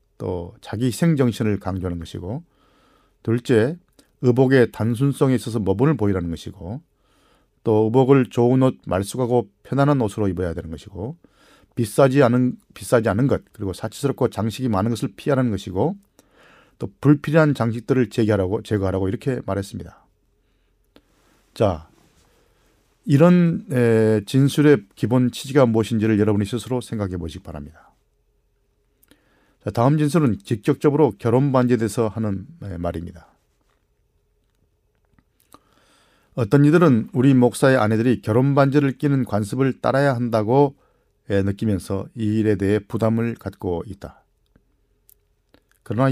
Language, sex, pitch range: Korean, male, 105-135 Hz